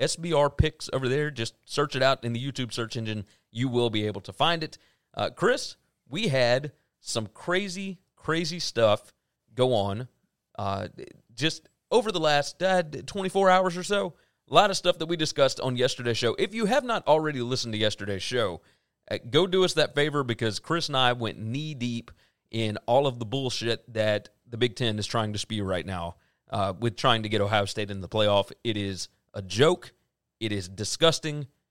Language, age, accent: English, 30-49, American